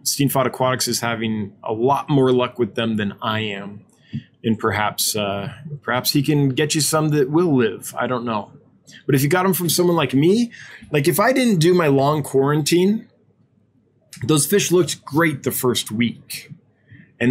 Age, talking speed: 20-39, 185 wpm